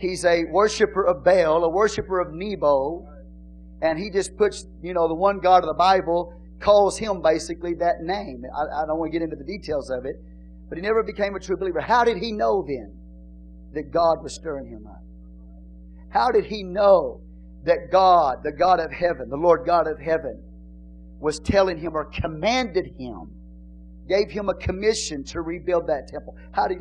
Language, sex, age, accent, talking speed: English, male, 50-69, American, 190 wpm